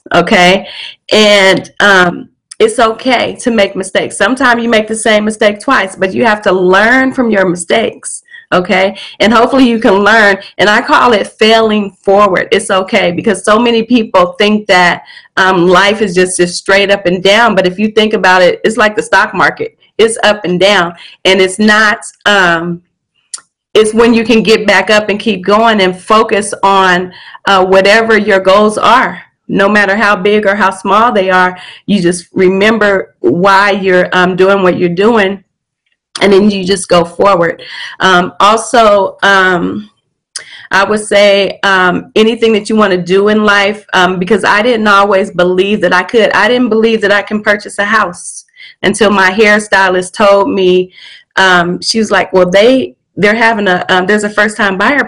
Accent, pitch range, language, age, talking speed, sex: American, 185-215 Hz, English, 30-49, 180 wpm, female